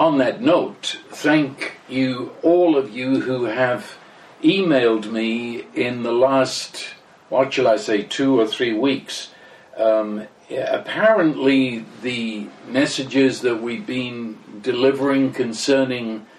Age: 50-69